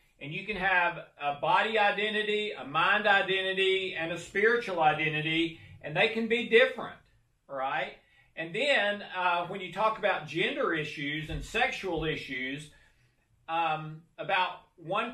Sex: male